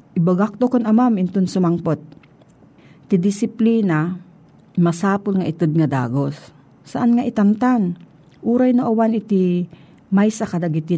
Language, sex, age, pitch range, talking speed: Filipino, female, 50-69, 160-215 Hz, 110 wpm